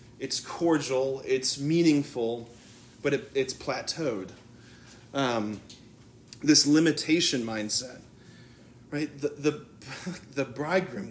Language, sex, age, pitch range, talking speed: English, male, 30-49, 120-150 Hz, 85 wpm